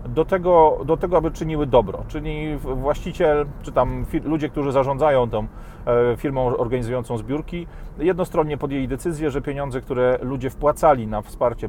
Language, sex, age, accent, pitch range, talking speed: Polish, male, 40-59, native, 115-145 Hz, 145 wpm